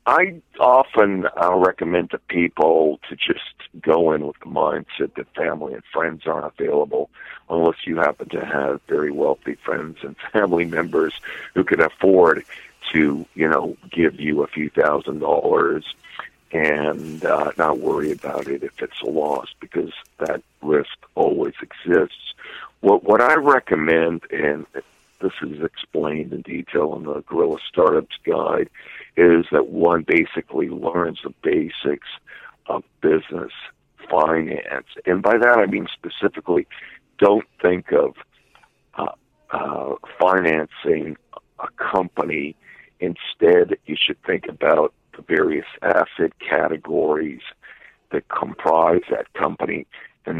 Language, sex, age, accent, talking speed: English, male, 60-79, American, 130 wpm